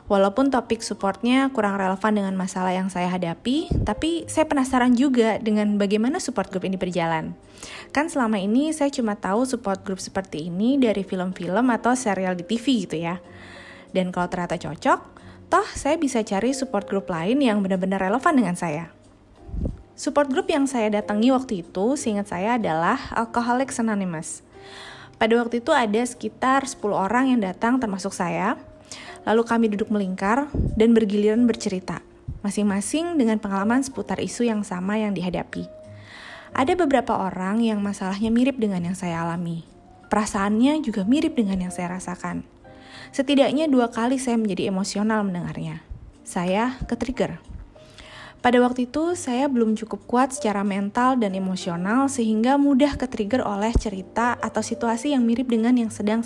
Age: 20-39